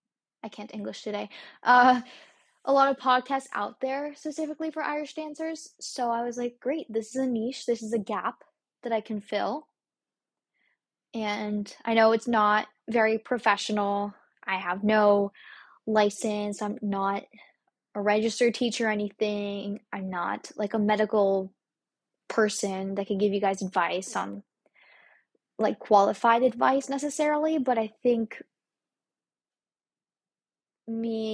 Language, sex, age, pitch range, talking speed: English, female, 10-29, 205-250 Hz, 135 wpm